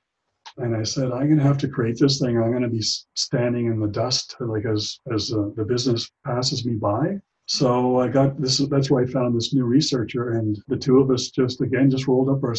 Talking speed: 240 wpm